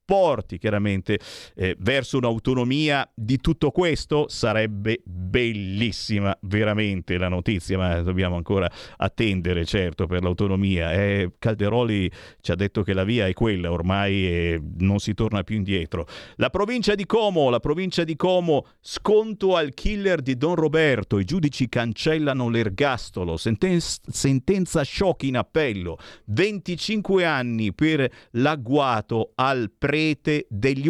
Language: Italian